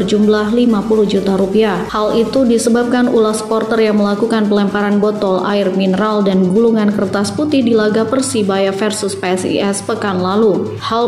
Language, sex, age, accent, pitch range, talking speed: Indonesian, female, 20-39, native, 200-230 Hz, 145 wpm